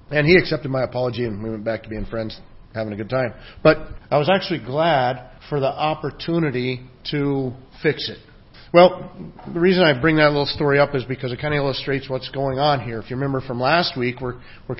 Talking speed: 220 wpm